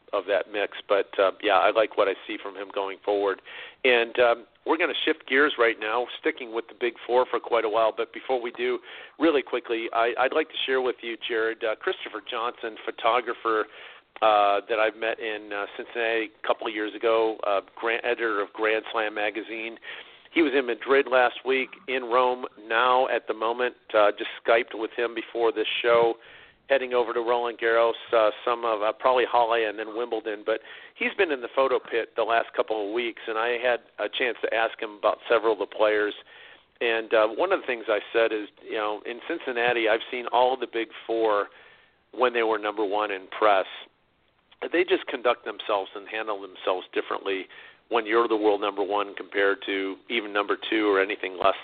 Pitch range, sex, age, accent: 110-125 Hz, male, 50-69, American